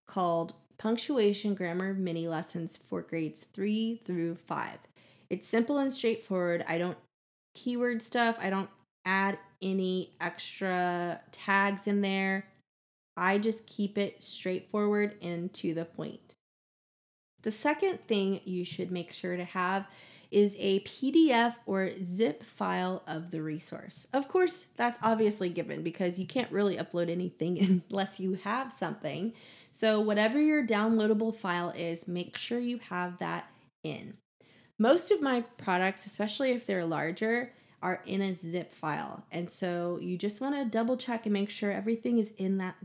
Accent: American